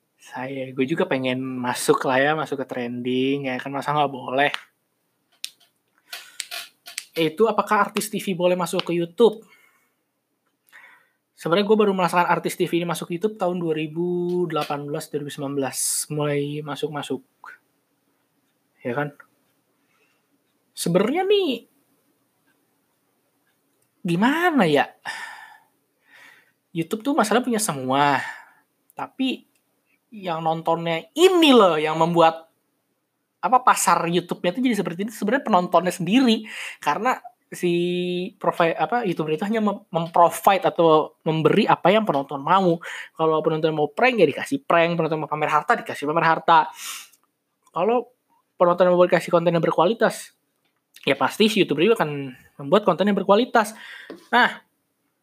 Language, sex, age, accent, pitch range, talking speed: Indonesian, male, 20-39, native, 155-210 Hz, 120 wpm